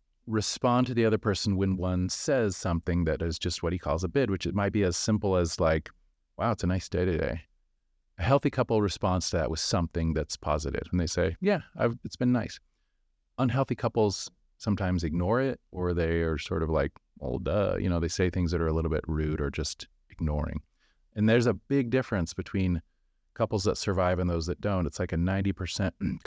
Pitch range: 80-110 Hz